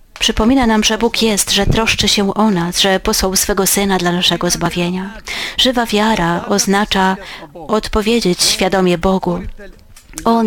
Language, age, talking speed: Polish, 30-49, 140 wpm